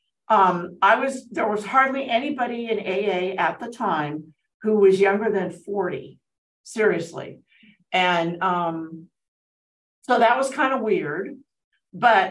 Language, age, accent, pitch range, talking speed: English, 50-69, American, 180-235 Hz, 130 wpm